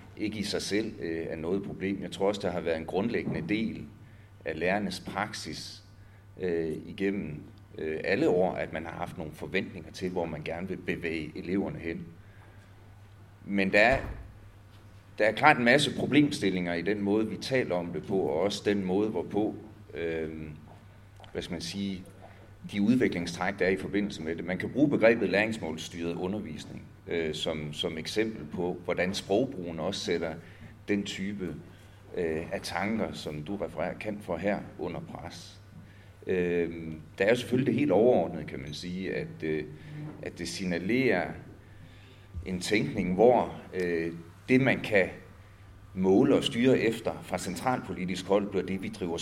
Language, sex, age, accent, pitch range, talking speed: English, male, 40-59, Danish, 85-100 Hz, 165 wpm